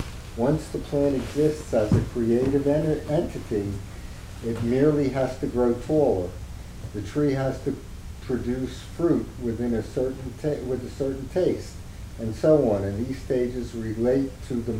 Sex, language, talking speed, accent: male, English, 155 wpm, American